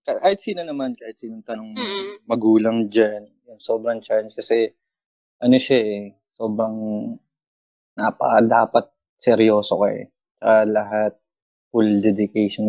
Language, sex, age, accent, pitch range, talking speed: Filipino, male, 20-39, native, 105-120 Hz, 110 wpm